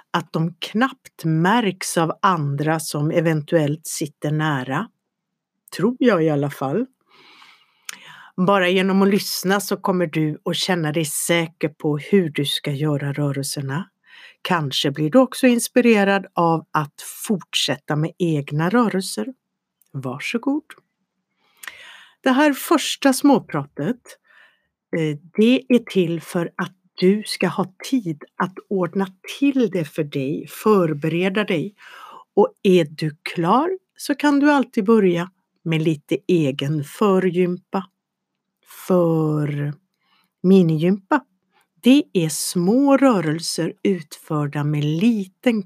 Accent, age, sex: native, 60-79, female